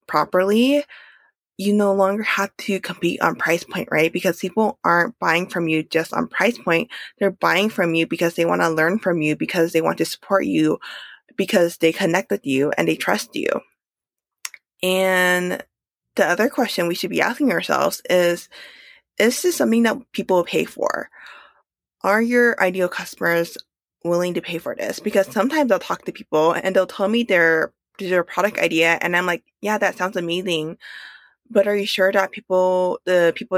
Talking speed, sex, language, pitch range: 190 wpm, female, English, 165-195 Hz